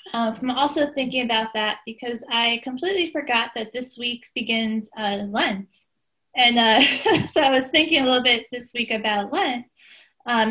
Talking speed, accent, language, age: 170 wpm, American, English, 20-39